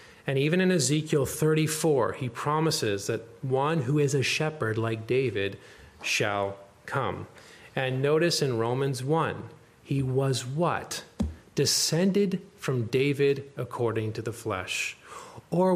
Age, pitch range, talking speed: 30-49, 125-170 Hz, 125 wpm